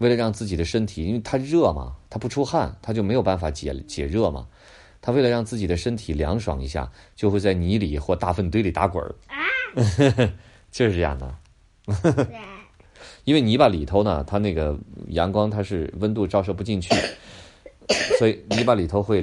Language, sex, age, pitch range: Chinese, male, 30-49, 85-115 Hz